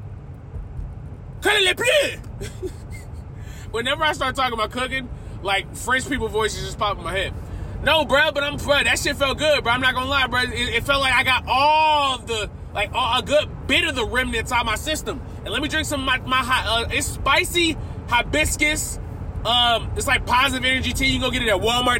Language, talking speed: English, 200 wpm